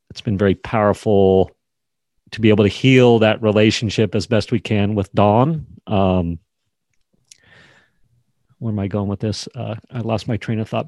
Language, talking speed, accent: English, 170 wpm, American